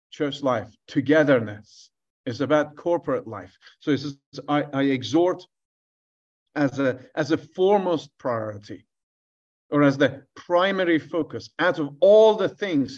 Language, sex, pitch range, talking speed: English, male, 130-165 Hz, 140 wpm